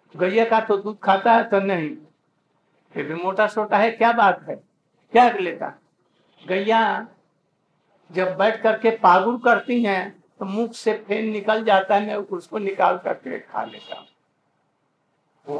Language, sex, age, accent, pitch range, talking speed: Hindi, male, 60-79, native, 190-220 Hz, 155 wpm